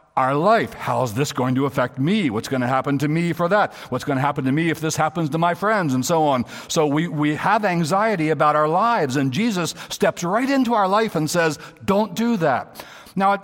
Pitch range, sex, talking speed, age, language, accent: 140-210 Hz, male, 230 wpm, 60-79, English, American